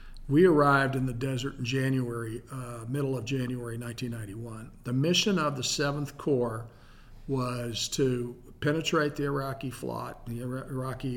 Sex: male